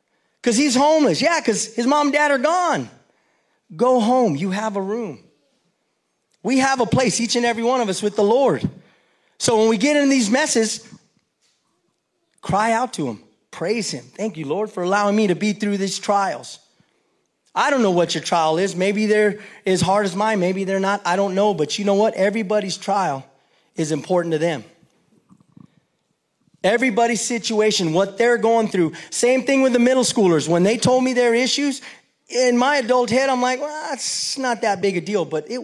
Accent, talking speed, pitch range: American, 195 wpm, 195-260 Hz